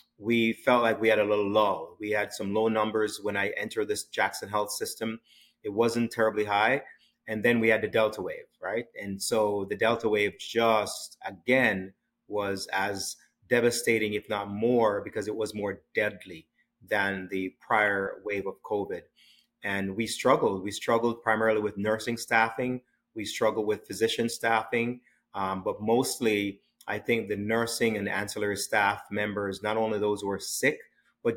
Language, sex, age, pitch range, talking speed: English, male, 30-49, 100-115 Hz, 170 wpm